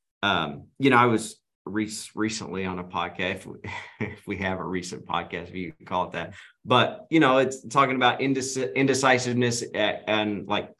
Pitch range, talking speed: 105-125 Hz, 195 wpm